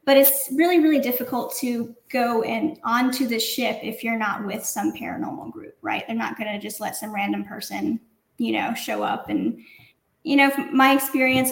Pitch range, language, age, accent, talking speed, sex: 230-275 Hz, English, 10-29, American, 200 wpm, female